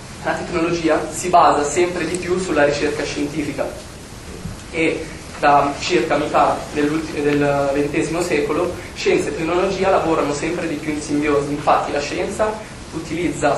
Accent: native